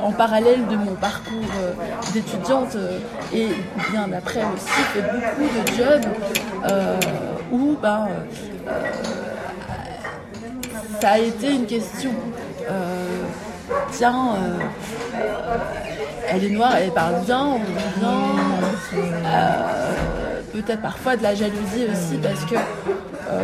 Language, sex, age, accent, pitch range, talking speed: French, female, 30-49, French, 200-240 Hz, 110 wpm